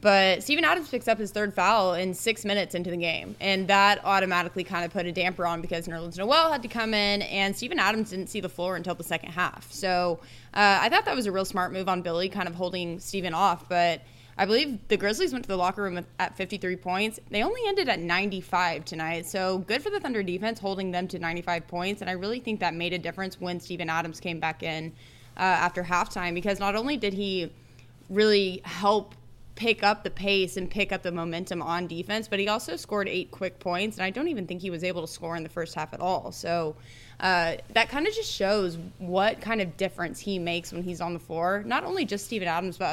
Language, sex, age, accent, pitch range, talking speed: English, female, 20-39, American, 170-200 Hz, 240 wpm